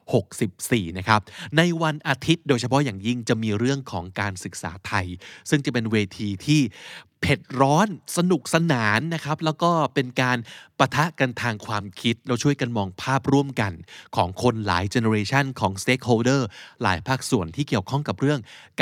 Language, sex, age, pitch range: Thai, male, 20-39, 105-140 Hz